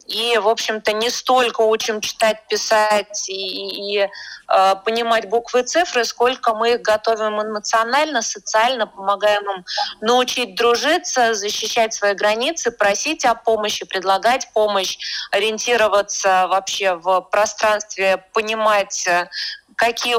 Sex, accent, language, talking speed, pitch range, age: female, native, Russian, 120 wpm, 210-245 Hz, 20-39